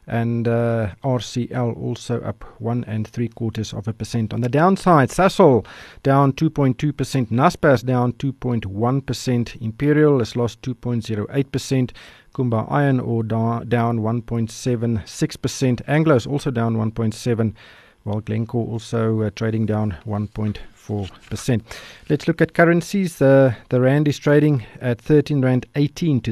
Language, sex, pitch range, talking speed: English, male, 110-135 Hz, 130 wpm